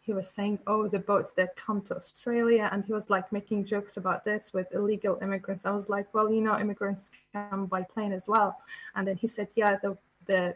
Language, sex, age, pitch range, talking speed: Arabic, female, 20-39, 195-220 Hz, 225 wpm